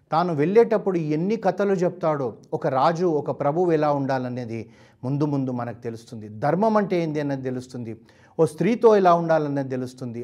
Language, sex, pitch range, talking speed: Telugu, male, 130-175 Hz, 145 wpm